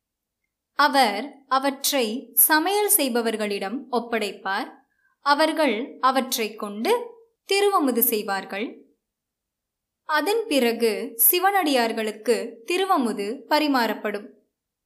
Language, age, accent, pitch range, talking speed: Tamil, 20-39, native, 220-350 Hz, 60 wpm